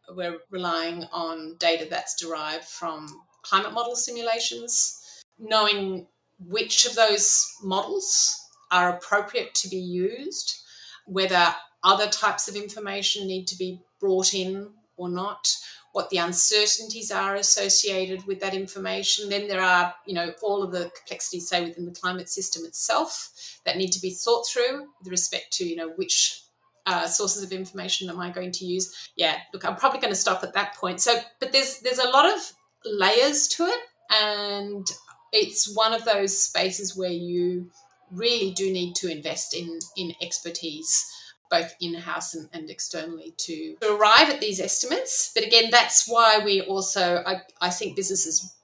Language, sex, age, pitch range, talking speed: English, female, 30-49, 175-220 Hz, 165 wpm